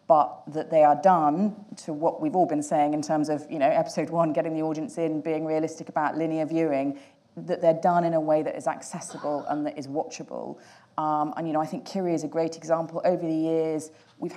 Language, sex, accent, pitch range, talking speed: English, female, British, 150-170 Hz, 230 wpm